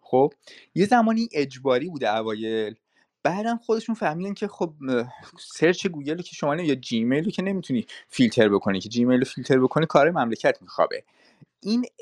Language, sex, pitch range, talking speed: English, male, 120-180 Hz, 145 wpm